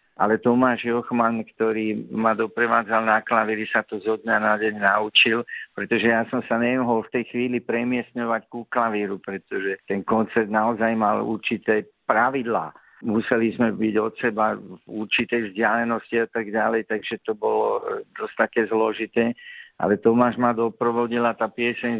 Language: Slovak